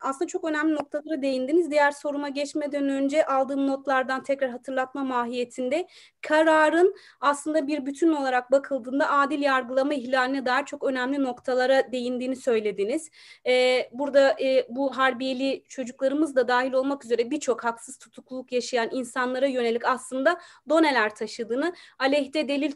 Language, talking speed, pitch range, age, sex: Turkish, 130 wpm, 255-290 Hz, 30-49, female